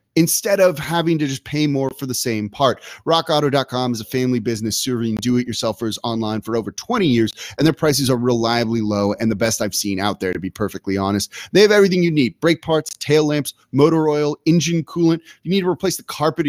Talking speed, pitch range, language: 215 wpm, 115-145 Hz, English